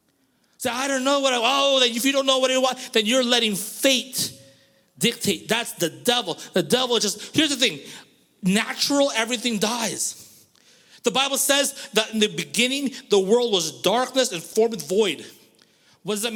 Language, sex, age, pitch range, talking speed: English, male, 30-49, 190-250 Hz, 185 wpm